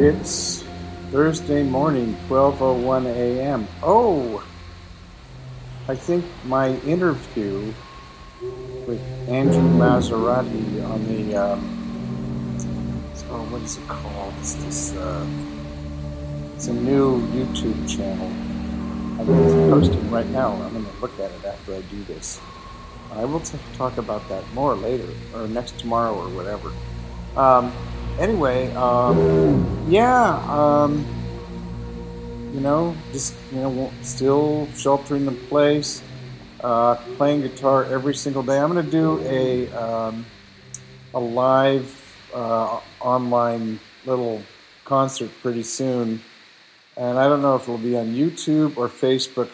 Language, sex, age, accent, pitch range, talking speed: English, male, 50-69, American, 90-130 Hz, 130 wpm